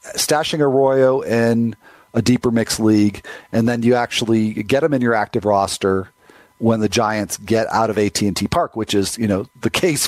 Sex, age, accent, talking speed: male, 40-59, American, 185 wpm